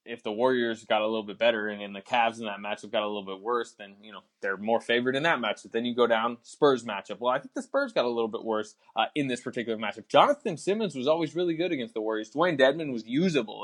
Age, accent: 20-39, American